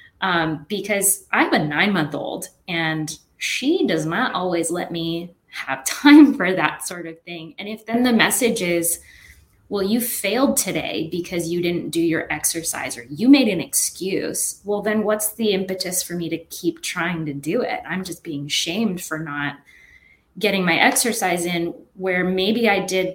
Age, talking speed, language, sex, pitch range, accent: 20-39, 180 wpm, English, female, 165-215 Hz, American